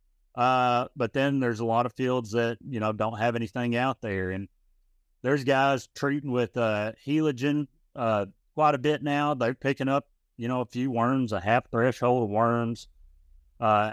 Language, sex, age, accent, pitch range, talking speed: English, male, 30-49, American, 105-135 Hz, 180 wpm